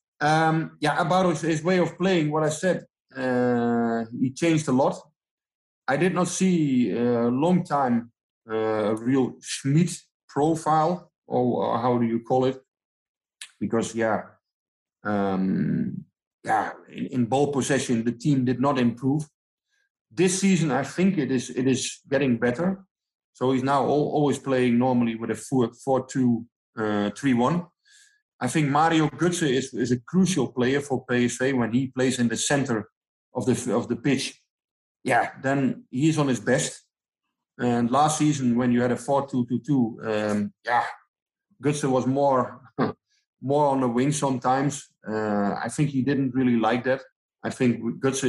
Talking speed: 160 wpm